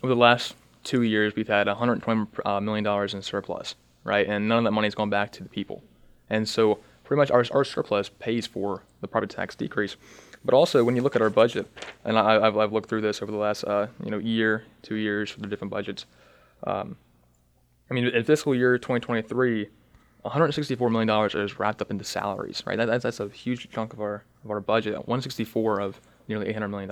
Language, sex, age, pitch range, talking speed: English, male, 20-39, 105-115 Hz, 215 wpm